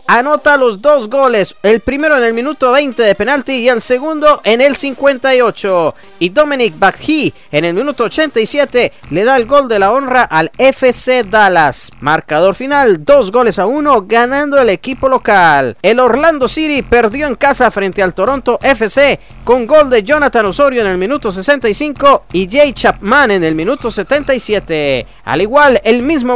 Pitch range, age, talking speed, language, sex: 215-280 Hz, 30-49, 170 wpm, English, male